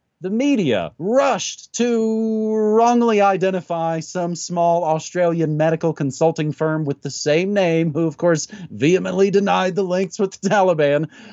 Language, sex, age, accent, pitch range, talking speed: English, male, 30-49, American, 145-185 Hz, 140 wpm